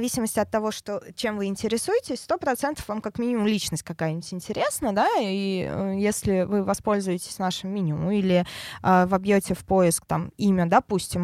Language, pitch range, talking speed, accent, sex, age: Russian, 180-230 Hz, 145 wpm, native, female, 20-39